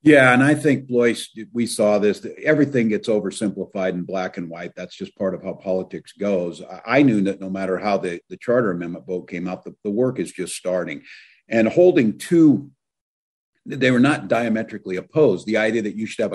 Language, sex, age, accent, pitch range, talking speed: English, male, 50-69, American, 95-120 Hz, 200 wpm